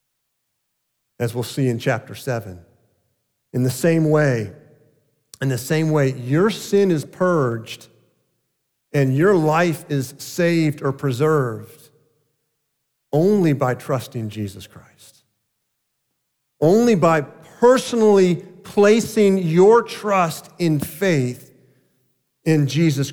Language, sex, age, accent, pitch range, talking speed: English, male, 50-69, American, 125-170 Hz, 105 wpm